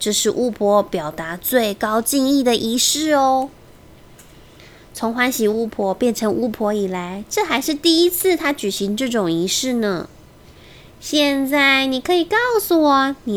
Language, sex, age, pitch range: Chinese, female, 20-39, 215-300 Hz